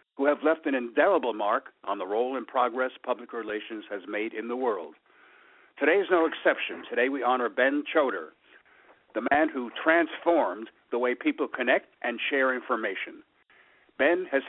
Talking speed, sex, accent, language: 165 wpm, male, American, English